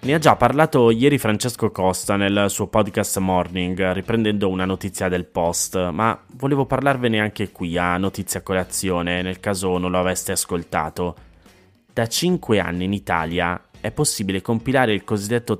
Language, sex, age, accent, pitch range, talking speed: Italian, male, 20-39, native, 95-115 Hz, 155 wpm